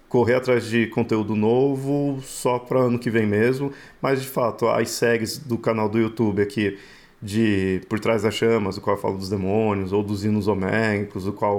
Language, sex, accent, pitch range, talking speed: Portuguese, male, Brazilian, 110-135 Hz, 195 wpm